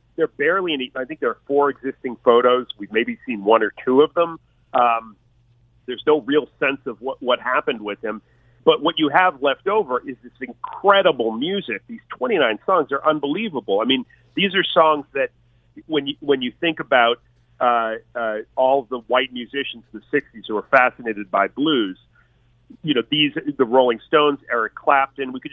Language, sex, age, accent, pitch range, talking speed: English, male, 40-59, American, 120-160 Hz, 195 wpm